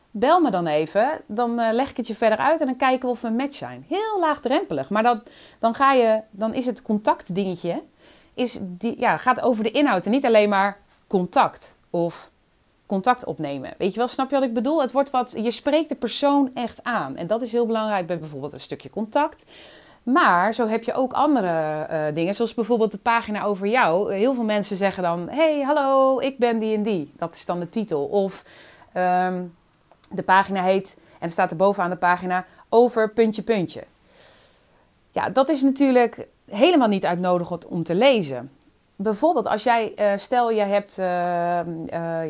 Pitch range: 180-245 Hz